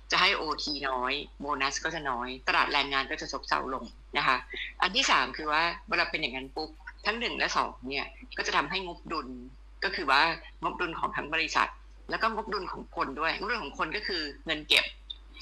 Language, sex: Thai, female